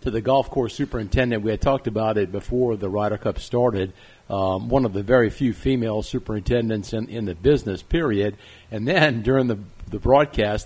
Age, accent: 50-69, American